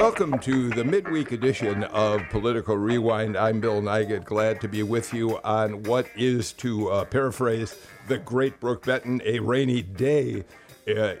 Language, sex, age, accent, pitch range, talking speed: English, male, 50-69, American, 105-140 Hz, 160 wpm